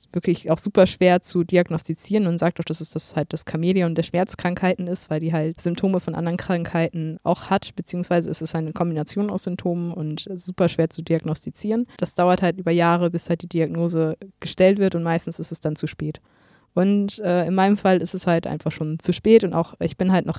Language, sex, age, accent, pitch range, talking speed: German, female, 20-39, German, 165-190 Hz, 225 wpm